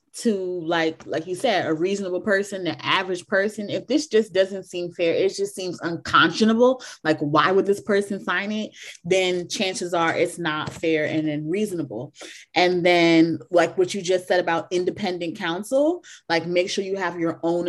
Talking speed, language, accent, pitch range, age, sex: 180 wpm, English, American, 160-200 Hz, 20-39, female